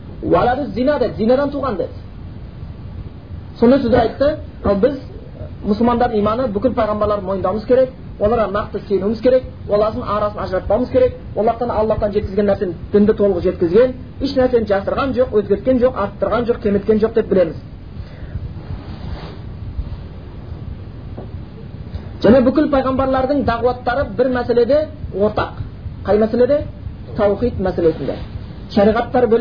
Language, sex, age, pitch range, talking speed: Bulgarian, male, 40-59, 195-255 Hz, 85 wpm